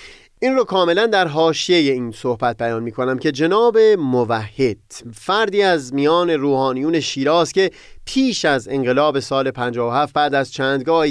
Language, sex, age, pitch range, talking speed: Persian, male, 30-49, 130-205 Hz, 140 wpm